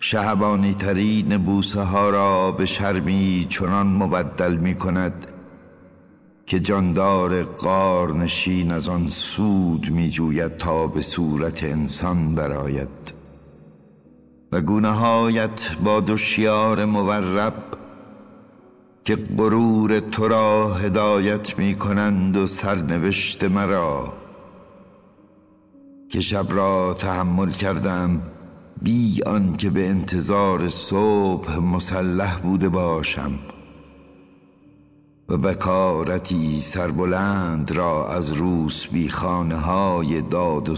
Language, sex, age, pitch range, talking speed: Persian, male, 60-79, 90-105 Hz, 95 wpm